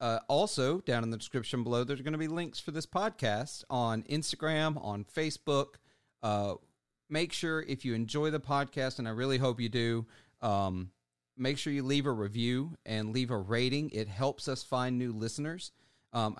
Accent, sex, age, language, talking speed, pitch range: American, male, 40-59, English, 185 wpm, 105-135 Hz